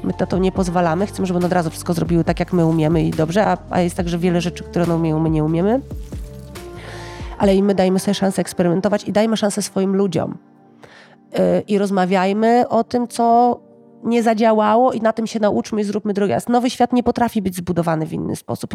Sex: female